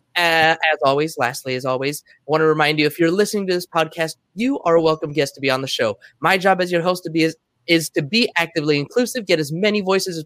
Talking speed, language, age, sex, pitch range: 265 wpm, English, 20-39, male, 145-210 Hz